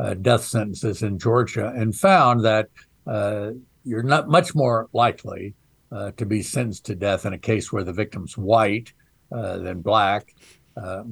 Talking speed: 165 wpm